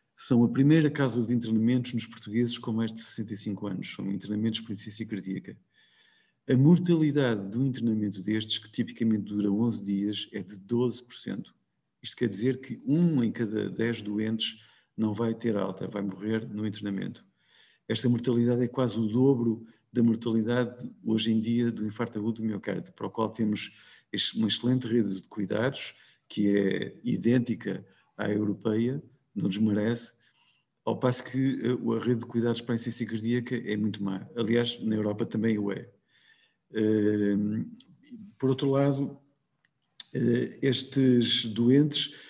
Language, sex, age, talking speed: Portuguese, male, 50-69, 150 wpm